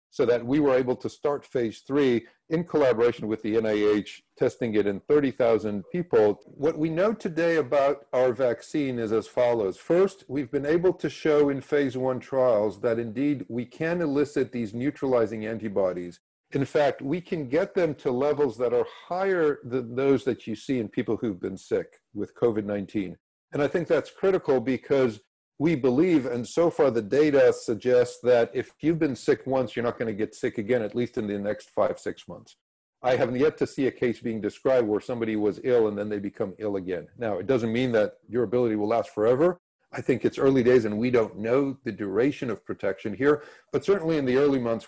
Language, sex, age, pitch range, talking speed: English, male, 50-69, 110-150 Hz, 205 wpm